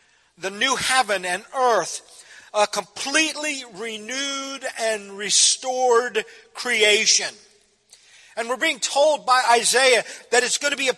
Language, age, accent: English, 50-69, American